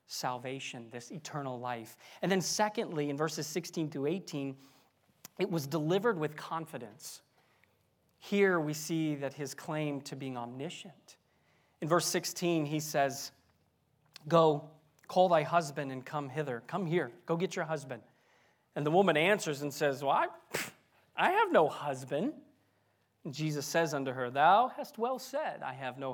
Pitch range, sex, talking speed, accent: 145-205 Hz, male, 155 wpm, American